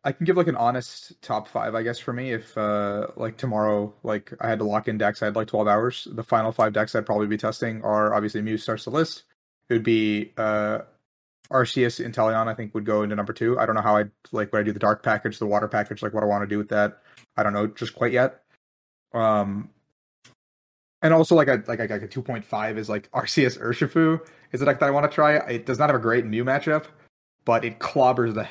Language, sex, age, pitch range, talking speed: English, male, 30-49, 105-130 Hz, 250 wpm